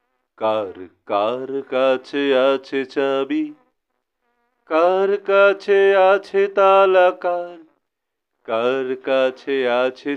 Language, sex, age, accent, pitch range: Bengali, male, 40-59, native, 155-205 Hz